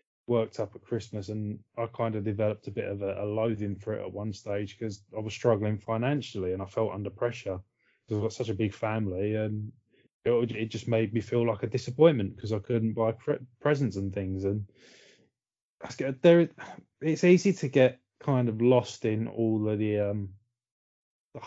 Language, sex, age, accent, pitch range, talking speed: English, male, 20-39, British, 110-125 Hz, 195 wpm